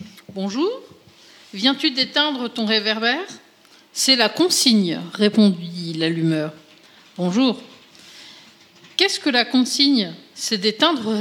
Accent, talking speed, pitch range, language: French, 90 wpm, 205-275 Hz, French